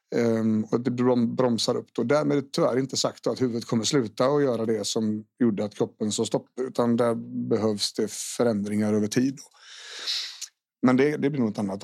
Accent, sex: Swedish, male